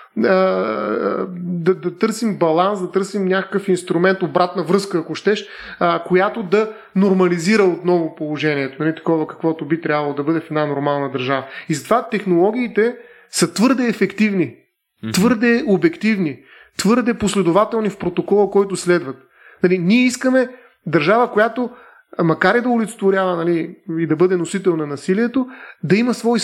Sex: male